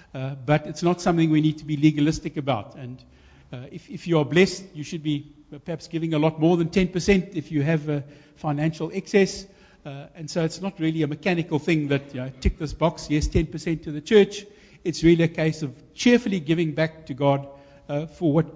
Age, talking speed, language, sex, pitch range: 60-79, 215 wpm, English, male, 150-180 Hz